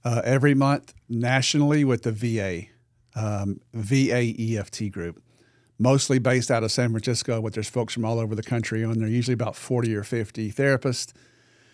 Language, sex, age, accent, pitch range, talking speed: English, male, 50-69, American, 115-125 Hz, 170 wpm